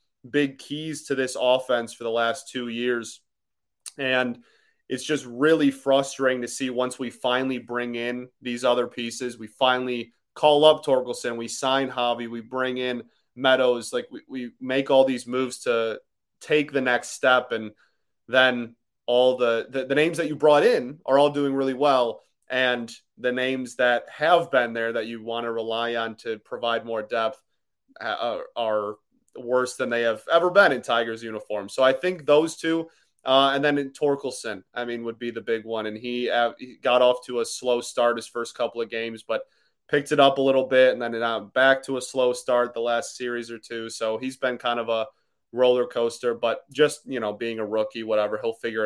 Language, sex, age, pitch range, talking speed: English, male, 30-49, 115-135 Hz, 200 wpm